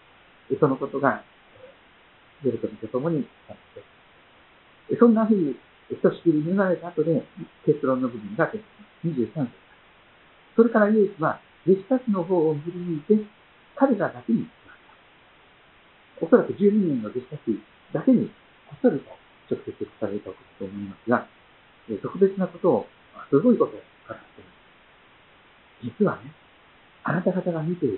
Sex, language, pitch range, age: male, Japanese, 155-215 Hz, 50-69